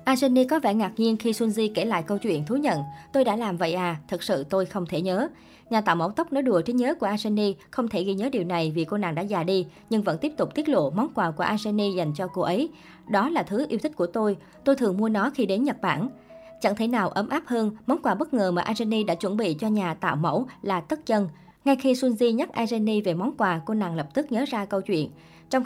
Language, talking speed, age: Vietnamese, 265 wpm, 20-39